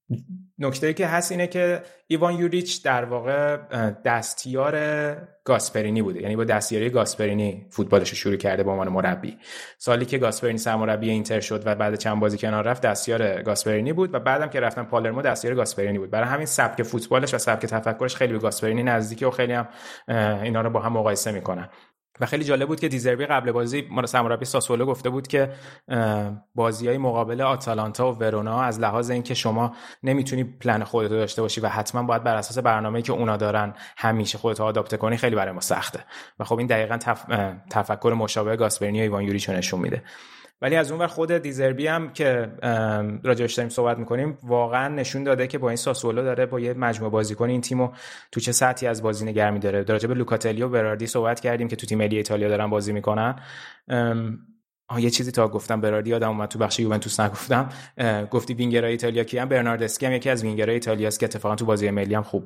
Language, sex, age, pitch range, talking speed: Persian, male, 20-39, 110-130 Hz, 190 wpm